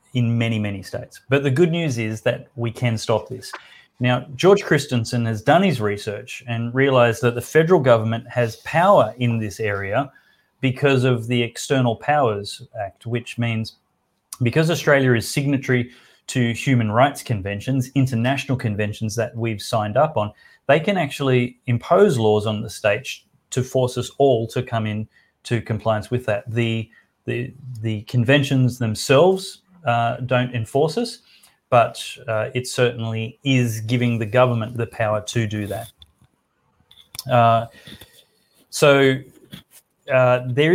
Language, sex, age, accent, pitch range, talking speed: English, male, 30-49, Australian, 115-135 Hz, 145 wpm